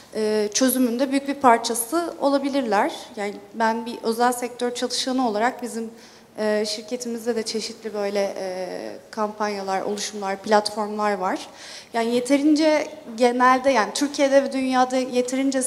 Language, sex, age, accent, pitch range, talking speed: Turkish, female, 30-49, native, 215-255 Hz, 110 wpm